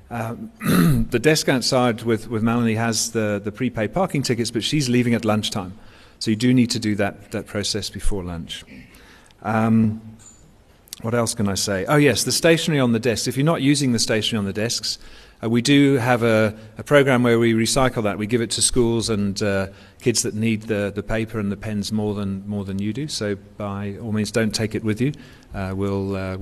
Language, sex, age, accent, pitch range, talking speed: English, male, 40-59, British, 105-125 Hz, 220 wpm